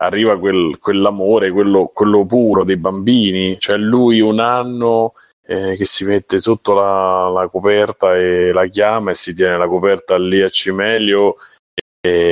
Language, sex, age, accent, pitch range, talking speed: Italian, male, 30-49, native, 95-125 Hz, 155 wpm